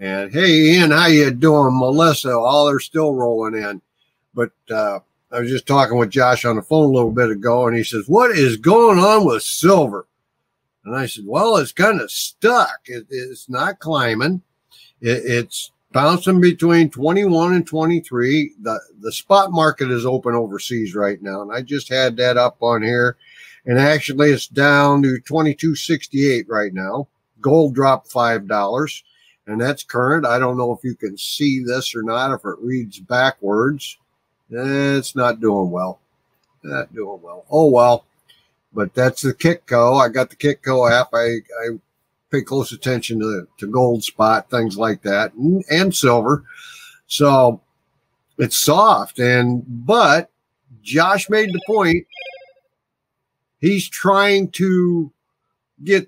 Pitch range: 120-160 Hz